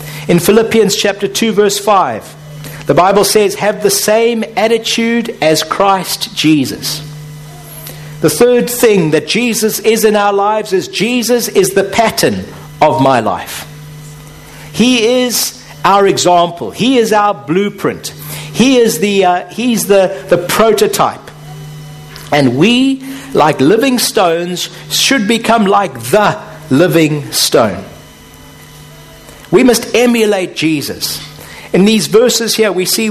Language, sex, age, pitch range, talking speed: English, male, 60-79, 165-220 Hz, 125 wpm